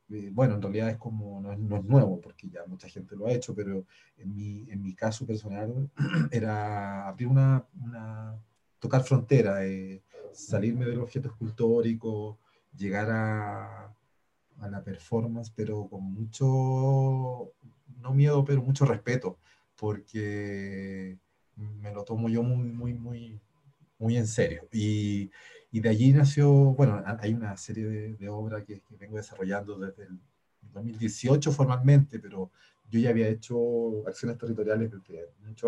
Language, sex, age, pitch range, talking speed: Spanish, male, 30-49, 100-115 Hz, 145 wpm